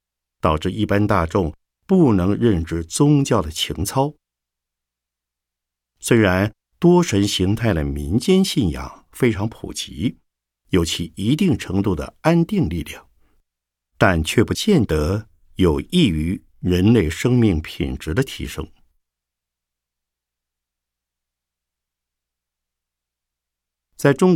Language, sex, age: Chinese, male, 50-69